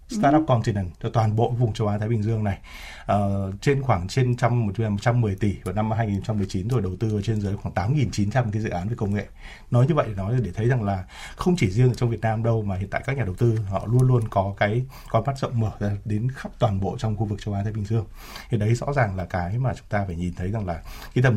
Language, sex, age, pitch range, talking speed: Vietnamese, male, 20-39, 100-125 Hz, 270 wpm